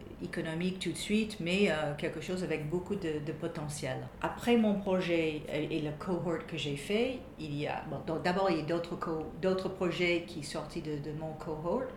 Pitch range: 150-175 Hz